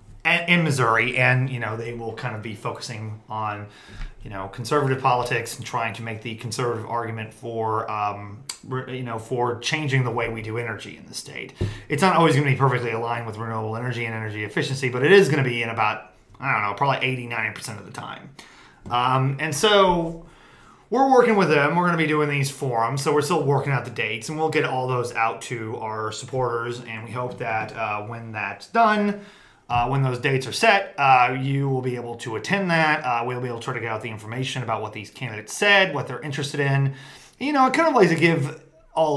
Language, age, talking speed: English, 30-49, 225 wpm